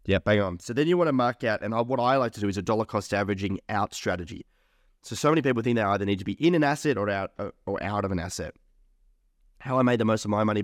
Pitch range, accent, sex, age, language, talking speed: 100-125 Hz, Australian, male, 20-39, English, 290 wpm